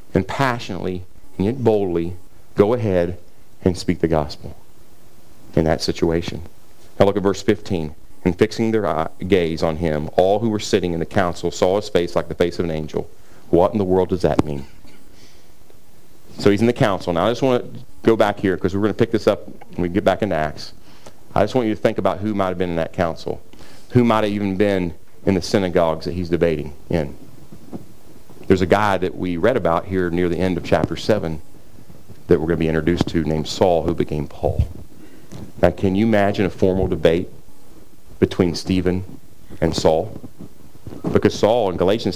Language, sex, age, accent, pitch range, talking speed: English, male, 40-59, American, 90-115 Hz, 200 wpm